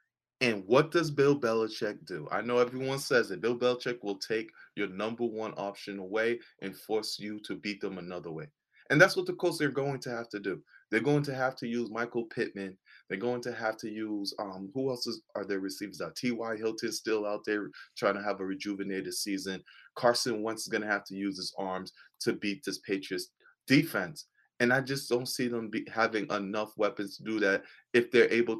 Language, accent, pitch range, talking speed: English, American, 100-120 Hz, 215 wpm